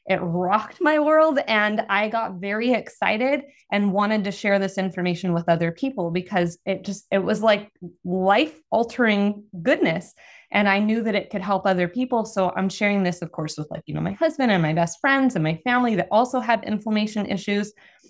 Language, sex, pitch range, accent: English, female, 185-230 Hz, American